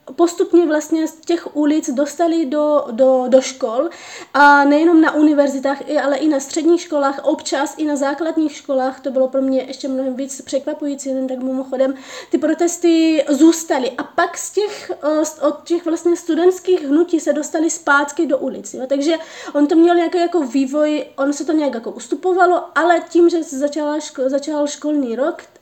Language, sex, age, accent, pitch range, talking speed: Czech, female, 20-39, native, 275-320 Hz, 170 wpm